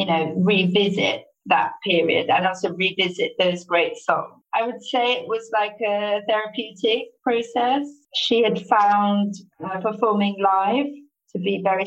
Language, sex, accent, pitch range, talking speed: English, female, British, 190-245 Hz, 145 wpm